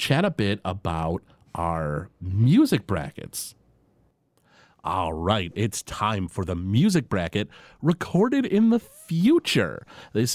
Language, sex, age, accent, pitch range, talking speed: English, male, 30-49, American, 95-145 Hz, 115 wpm